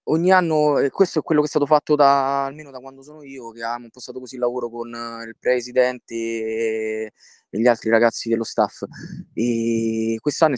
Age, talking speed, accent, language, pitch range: 20-39, 180 wpm, native, Italian, 130-160 Hz